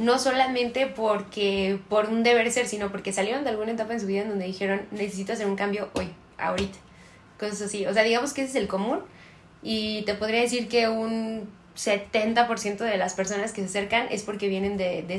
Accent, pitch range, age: Mexican, 195-225 Hz, 20-39